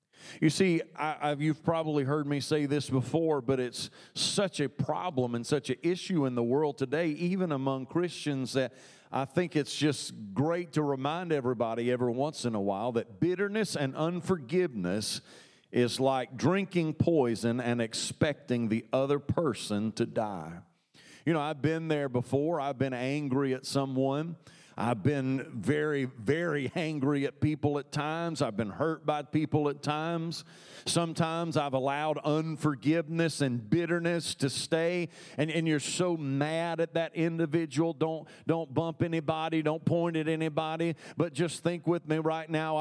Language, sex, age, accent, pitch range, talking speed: English, male, 40-59, American, 140-170 Hz, 155 wpm